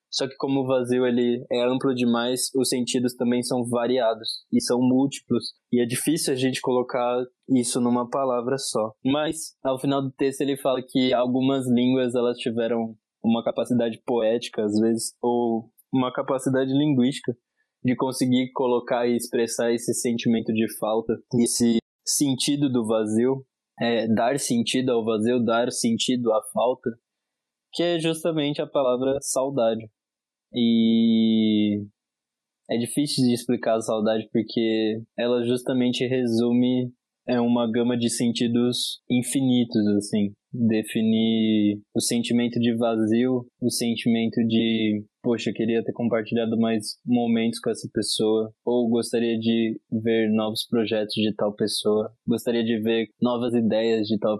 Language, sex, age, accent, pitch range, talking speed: Portuguese, male, 20-39, Brazilian, 115-125 Hz, 135 wpm